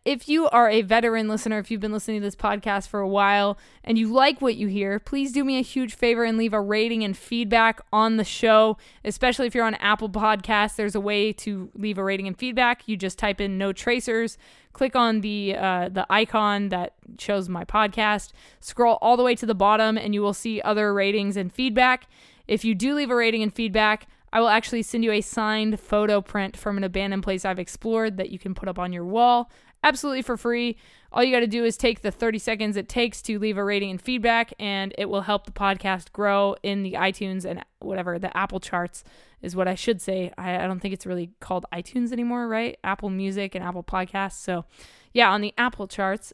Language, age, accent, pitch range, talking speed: English, 20-39, American, 195-235 Hz, 230 wpm